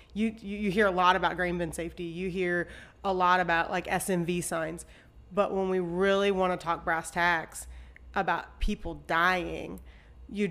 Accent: American